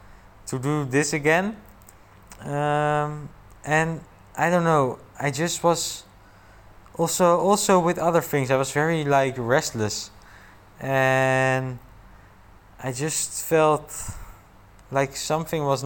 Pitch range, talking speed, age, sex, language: 105-145 Hz, 110 wpm, 20-39, male, English